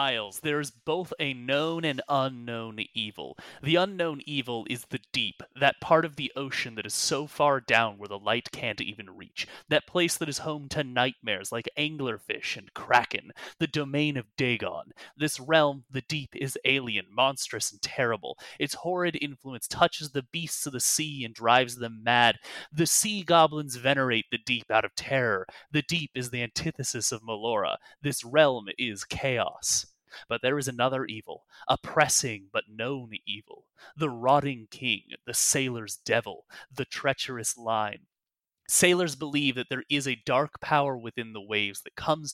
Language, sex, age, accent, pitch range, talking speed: English, male, 30-49, American, 120-150 Hz, 170 wpm